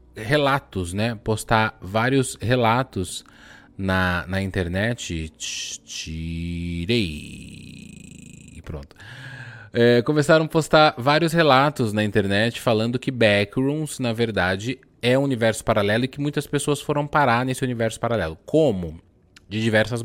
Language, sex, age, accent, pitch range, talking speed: Portuguese, male, 20-39, Brazilian, 95-130 Hz, 115 wpm